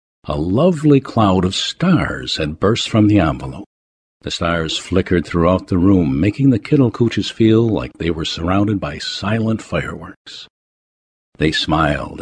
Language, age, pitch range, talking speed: English, 60-79, 85-125 Hz, 140 wpm